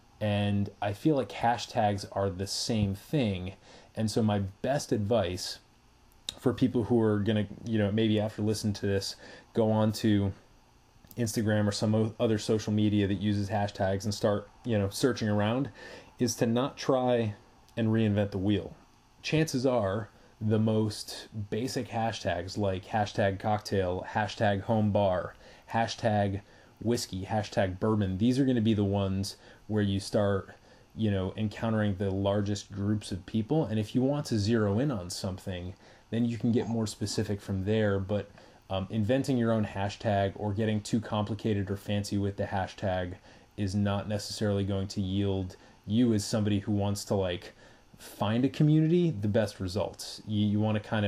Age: 30-49